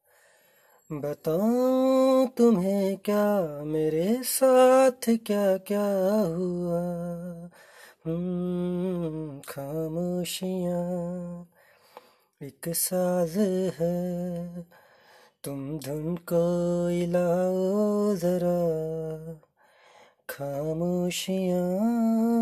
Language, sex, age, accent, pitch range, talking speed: Hindi, male, 20-39, native, 175-245 Hz, 50 wpm